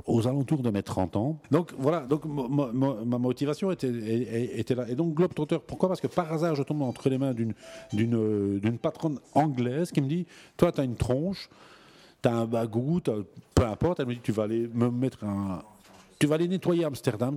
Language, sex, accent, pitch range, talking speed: French, male, French, 110-150 Hz, 225 wpm